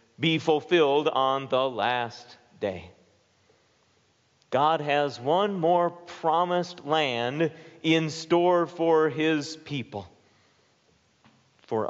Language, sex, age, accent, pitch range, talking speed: English, male, 40-59, American, 115-160 Hz, 90 wpm